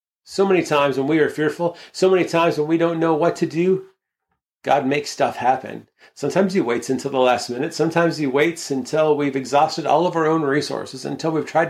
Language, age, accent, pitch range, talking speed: English, 40-59, American, 130-160 Hz, 215 wpm